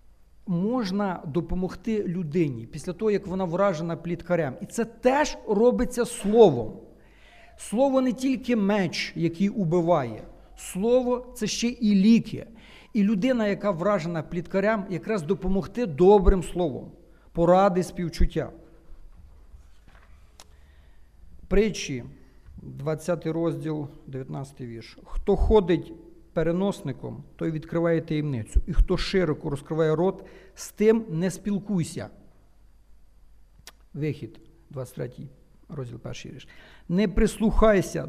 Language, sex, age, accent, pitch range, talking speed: Ukrainian, male, 50-69, native, 155-205 Hz, 100 wpm